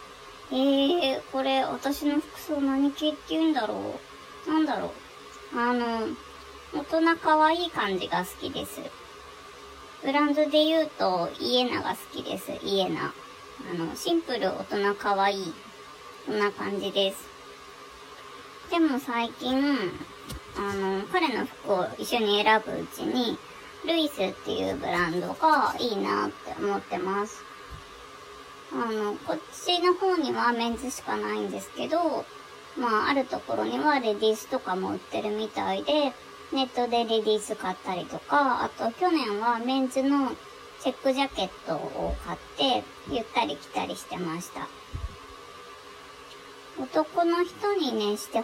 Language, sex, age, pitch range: Japanese, male, 20-39, 205-310 Hz